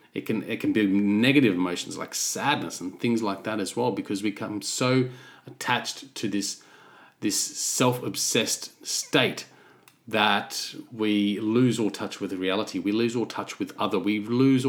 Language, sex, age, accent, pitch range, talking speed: English, male, 30-49, Australian, 100-125 Hz, 170 wpm